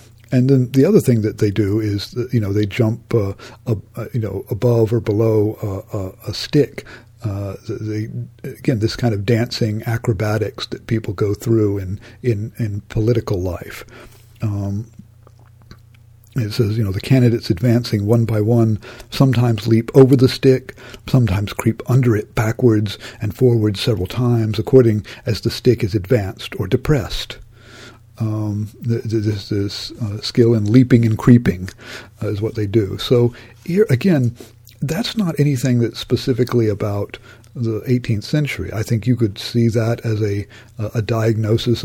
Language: English